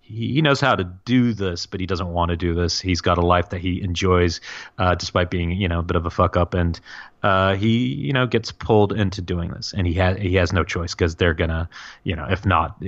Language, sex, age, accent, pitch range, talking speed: English, male, 30-49, American, 90-105 Hz, 250 wpm